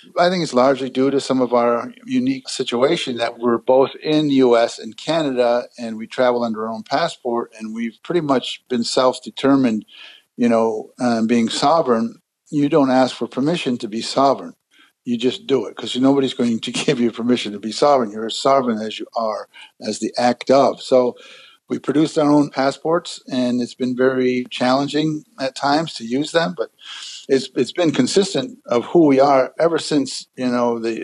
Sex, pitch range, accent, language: male, 120-145 Hz, American, English